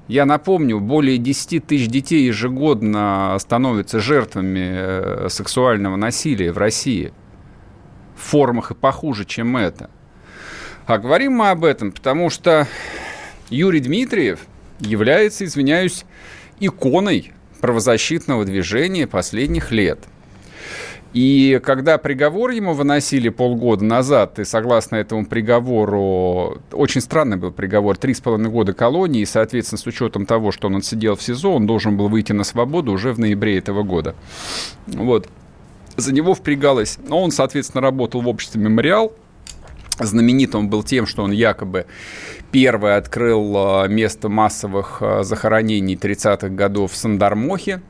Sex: male